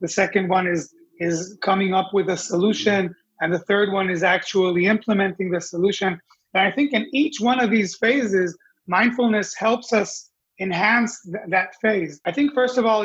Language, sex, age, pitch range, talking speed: English, male, 30-49, 185-220 Hz, 185 wpm